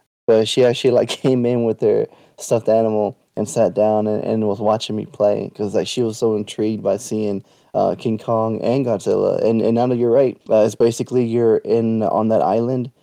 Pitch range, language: 110-120 Hz, English